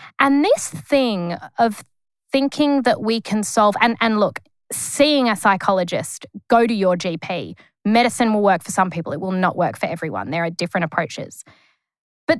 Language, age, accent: English, 20-39, Australian